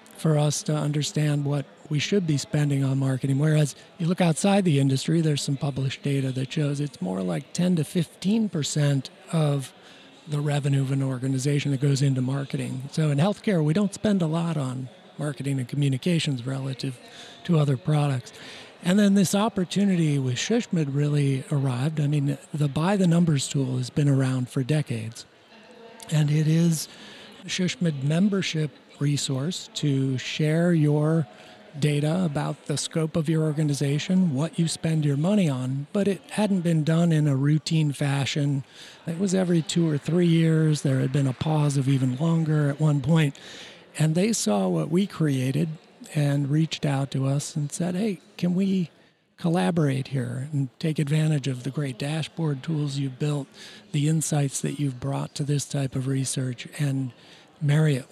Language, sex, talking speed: English, male, 170 wpm